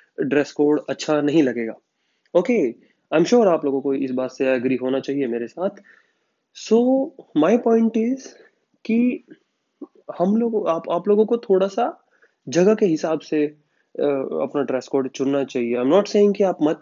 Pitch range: 140-220 Hz